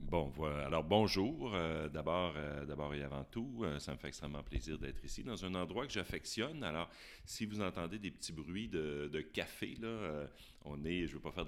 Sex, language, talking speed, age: male, French, 225 wpm, 40-59